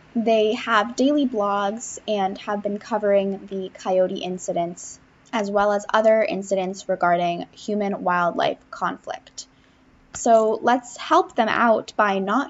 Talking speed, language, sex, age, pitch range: 130 wpm, English, female, 10-29, 185-230 Hz